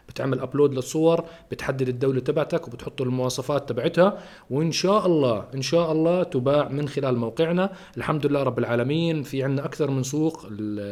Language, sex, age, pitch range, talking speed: Arabic, male, 40-59, 130-170 Hz, 155 wpm